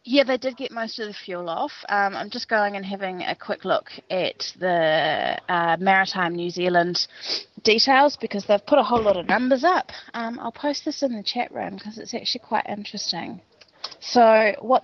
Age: 20-39